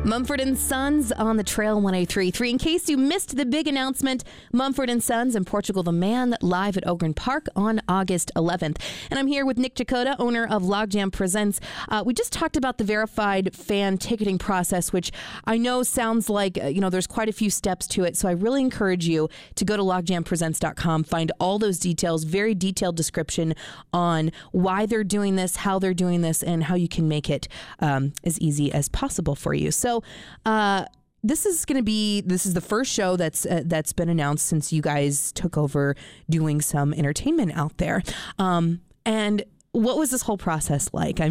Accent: American